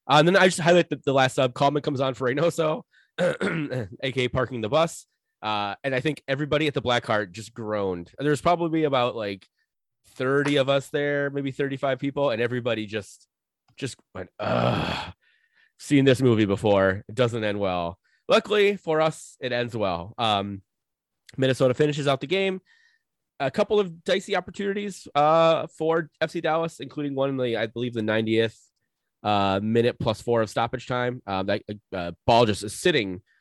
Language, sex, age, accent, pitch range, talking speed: English, male, 20-39, American, 105-145 Hz, 180 wpm